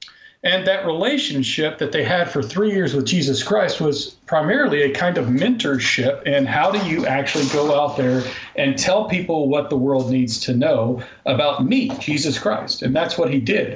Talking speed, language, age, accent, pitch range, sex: 190 wpm, English, 40-59, American, 135-195 Hz, male